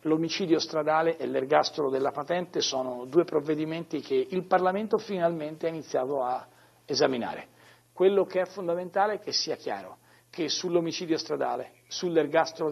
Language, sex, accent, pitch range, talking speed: Italian, male, native, 100-155 Hz, 135 wpm